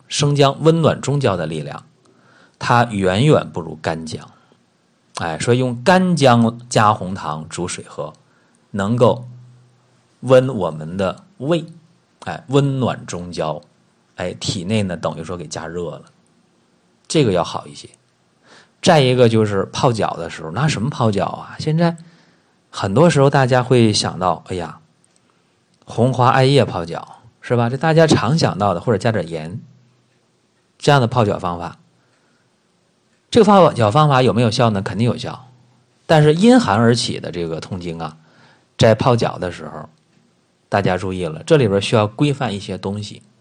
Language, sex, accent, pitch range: Chinese, male, native, 100-140 Hz